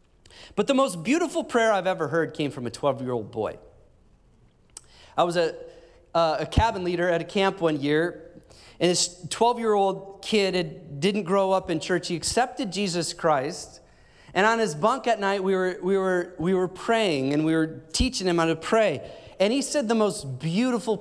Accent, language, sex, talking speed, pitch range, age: American, English, male, 190 wpm, 145-195 Hz, 30-49